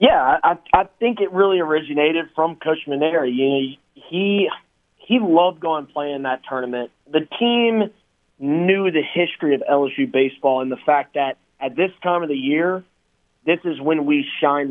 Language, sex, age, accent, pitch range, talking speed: English, male, 20-39, American, 135-170 Hz, 165 wpm